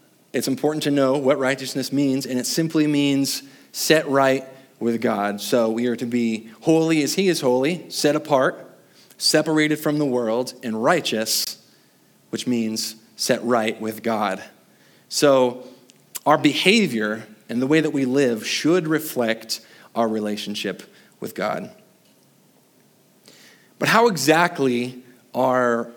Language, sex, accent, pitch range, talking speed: English, male, American, 125-160 Hz, 135 wpm